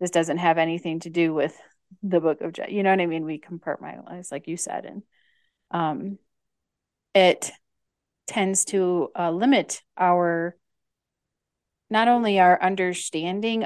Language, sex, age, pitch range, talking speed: English, female, 30-49, 165-190 Hz, 145 wpm